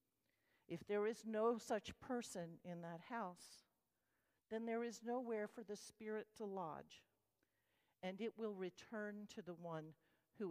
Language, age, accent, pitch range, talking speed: English, 50-69, American, 175-225 Hz, 150 wpm